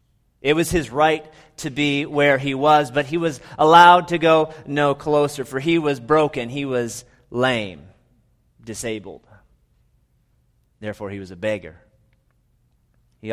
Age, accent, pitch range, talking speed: 30-49, American, 115-140 Hz, 140 wpm